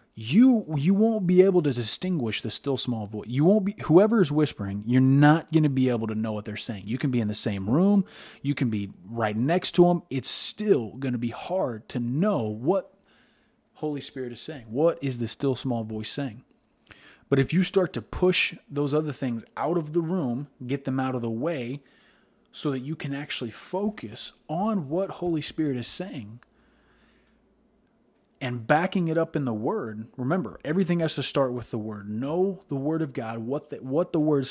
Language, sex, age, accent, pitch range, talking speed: English, male, 30-49, American, 120-170 Hz, 205 wpm